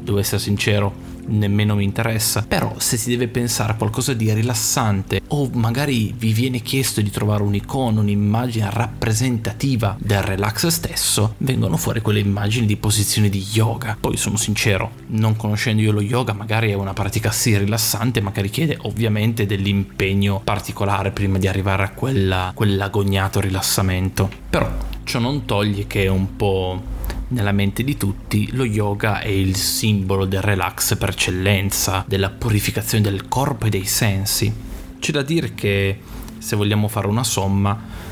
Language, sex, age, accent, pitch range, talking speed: Italian, male, 20-39, native, 100-115 Hz, 155 wpm